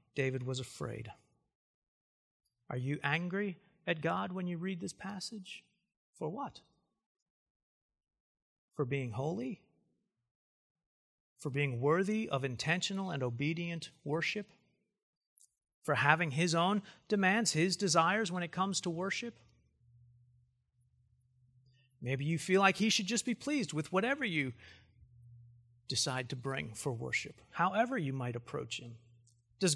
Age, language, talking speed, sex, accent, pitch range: 40-59, English, 125 wpm, male, American, 130-195 Hz